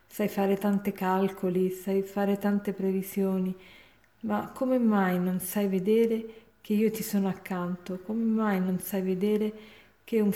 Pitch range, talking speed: 195-215 Hz, 150 wpm